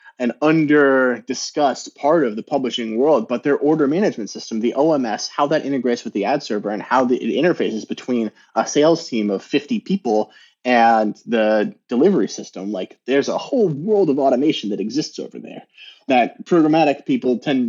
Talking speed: 175 wpm